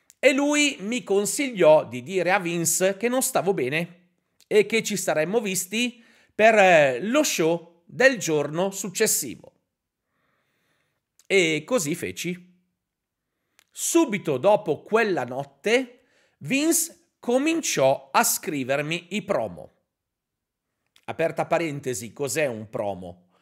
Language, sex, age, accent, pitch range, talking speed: Italian, male, 40-59, native, 150-230 Hz, 105 wpm